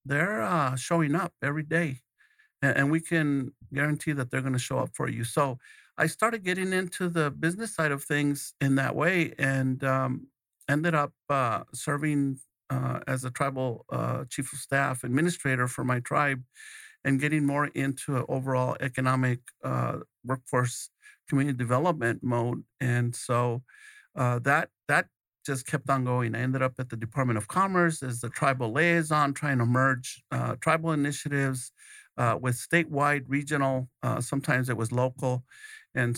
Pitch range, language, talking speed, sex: 130-150 Hz, English, 165 wpm, male